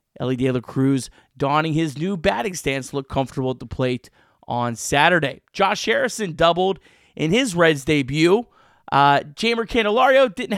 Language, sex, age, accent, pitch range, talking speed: English, male, 30-49, American, 135-175 Hz, 155 wpm